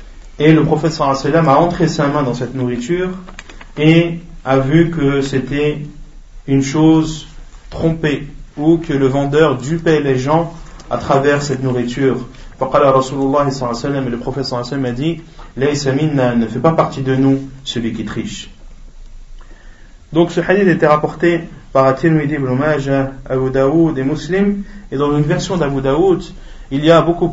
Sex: male